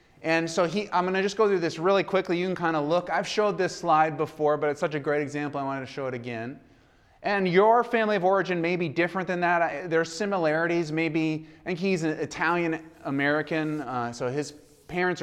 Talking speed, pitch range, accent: 220 wpm, 135-165 Hz, American